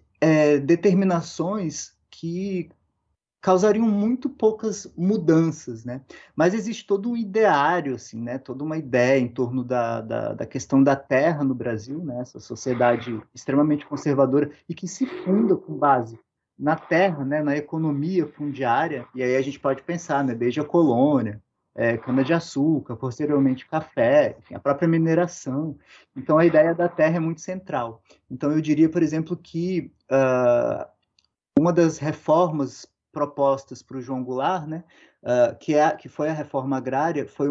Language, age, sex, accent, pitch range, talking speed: Portuguese, 20-39, male, Brazilian, 130-175 Hz, 150 wpm